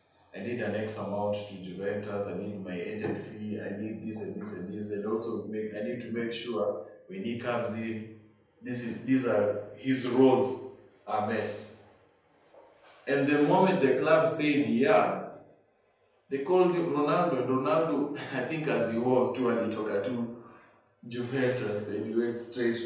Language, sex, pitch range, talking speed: English, male, 105-130 Hz, 175 wpm